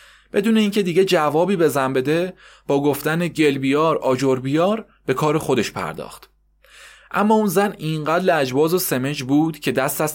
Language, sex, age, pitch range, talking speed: Persian, male, 30-49, 130-170 Hz, 155 wpm